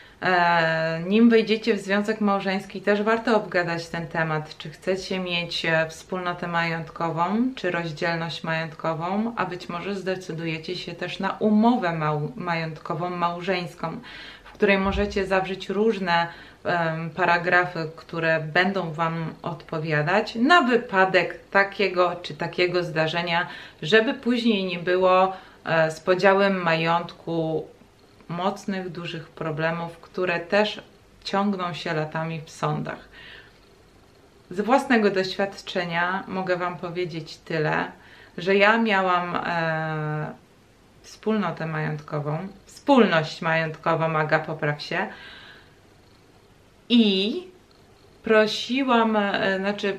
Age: 20-39